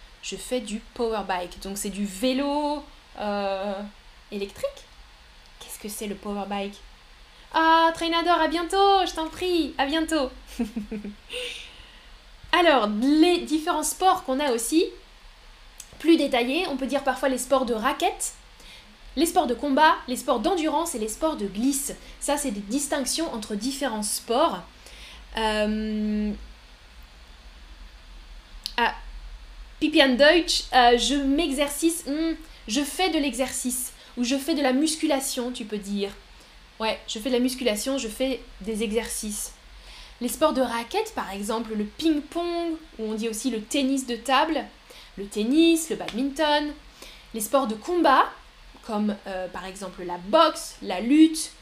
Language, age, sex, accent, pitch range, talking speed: French, 10-29, female, French, 215-305 Hz, 145 wpm